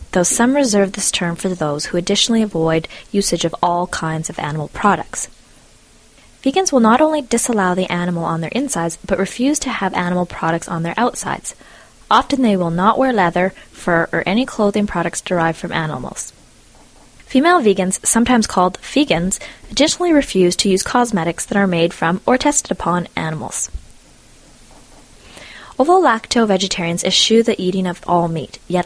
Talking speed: 160 wpm